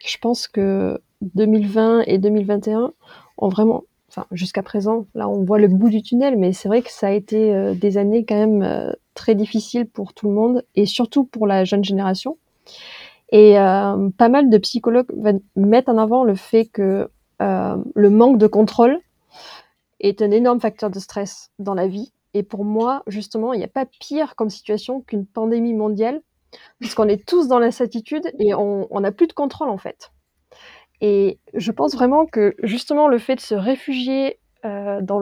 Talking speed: 185 wpm